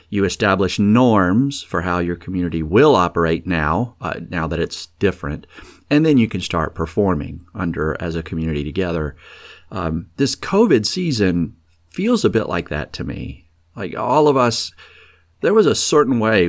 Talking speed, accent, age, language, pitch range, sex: 165 wpm, American, 50-69, English, 85-105 Hz, male